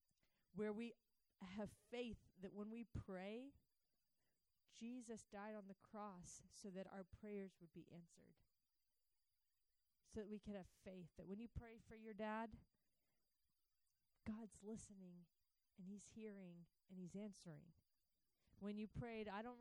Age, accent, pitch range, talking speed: 40-59, American, 180-225 Hz, 140 wpm